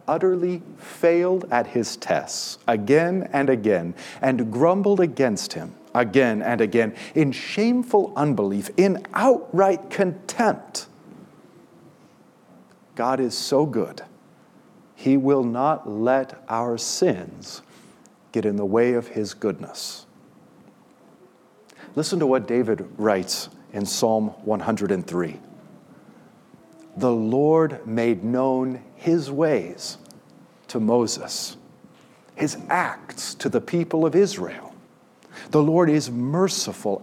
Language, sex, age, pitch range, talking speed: English, male, 50-69, 120-180 Hz, 105 wpm